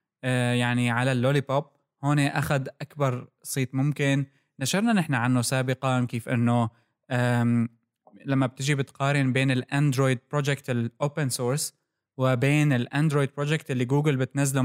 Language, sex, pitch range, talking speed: Arabic, male, 130-155 Hz, 115 wpm